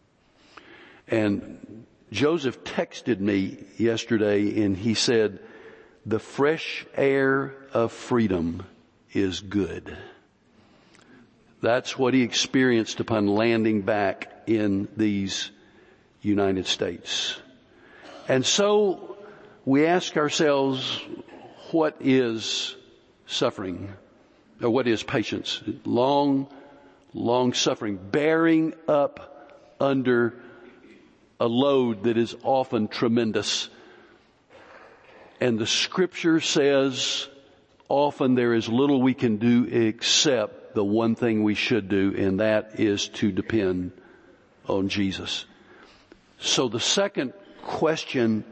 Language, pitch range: English, 105-135 Hz